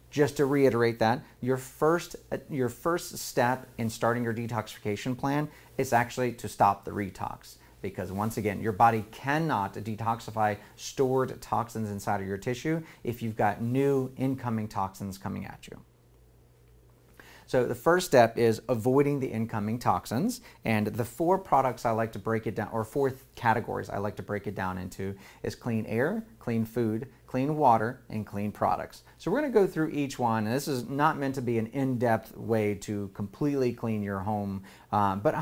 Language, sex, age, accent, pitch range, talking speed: English, male, 30-49, American, 105-135 Hz, 180 wpm